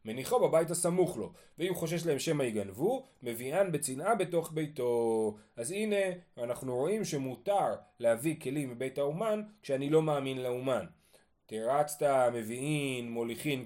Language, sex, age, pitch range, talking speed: Hebrew, male, 30-49, 125-175 Hz, 125 wpm